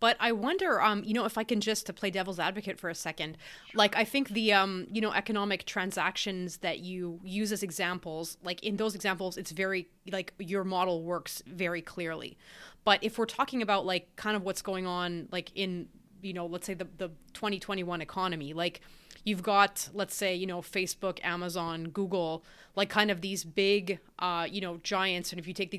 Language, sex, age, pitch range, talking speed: English, female, 20-39, 175-200 Hz, 205 wpm